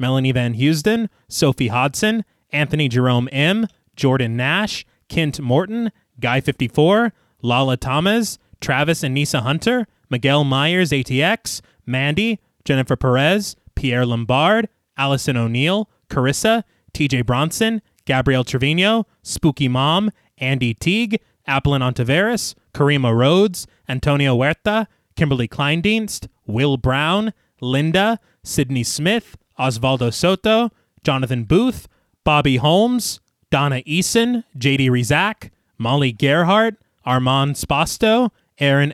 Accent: American